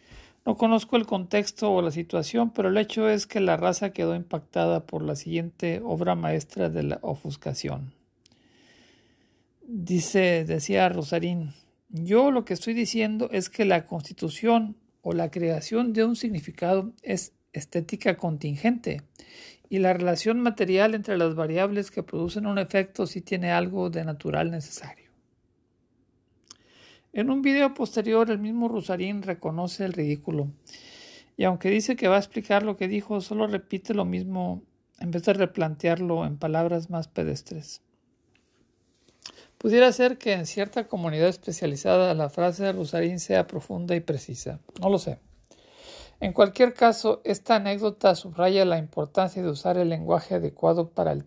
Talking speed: 150 wpm